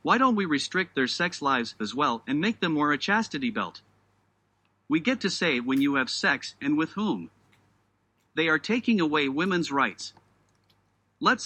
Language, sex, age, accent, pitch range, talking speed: English, male, 50-69, American, 115-195 Hz, 180 wpm